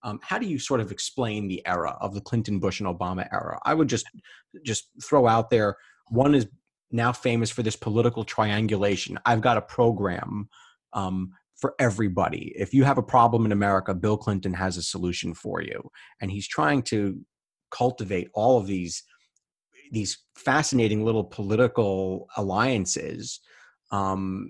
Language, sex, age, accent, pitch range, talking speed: English, male, 30-49, American, 100-125 Hz, 160 wpm